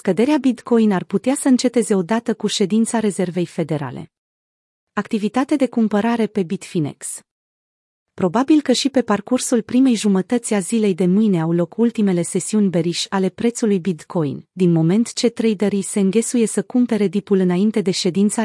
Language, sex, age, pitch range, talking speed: Romanian, female, 30-49, 185-225 Hz, 155 wpm